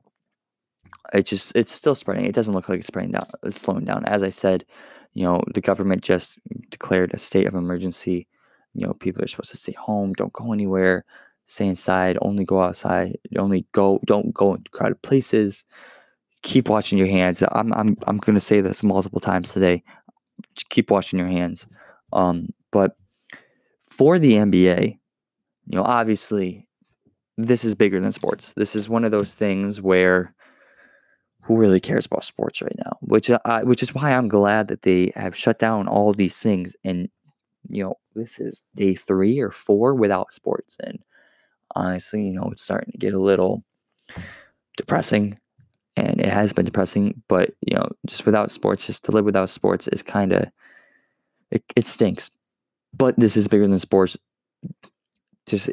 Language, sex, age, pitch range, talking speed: English, male, 20-39, 95-110 Hz, 170 wpm